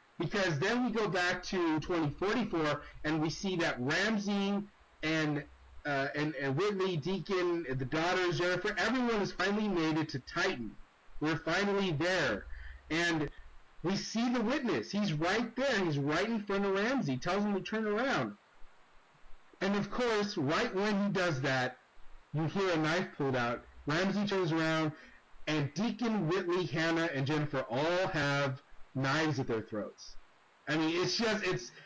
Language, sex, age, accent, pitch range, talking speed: English, male, 30-49, American, 150-200 Hz, 160 wpm